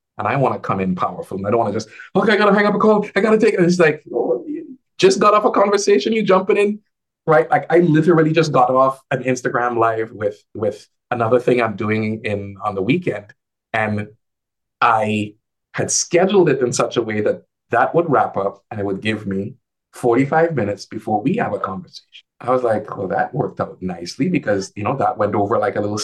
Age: 30-49